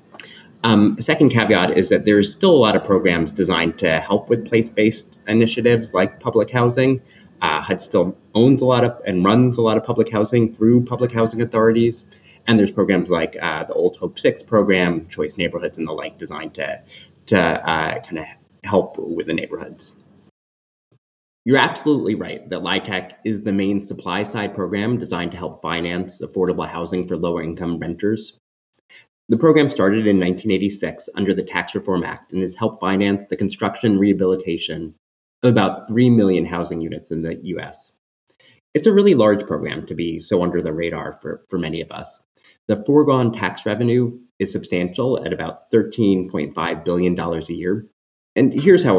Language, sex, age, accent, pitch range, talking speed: English, male, 30-49, American, 90-115 Hz, 170 wpm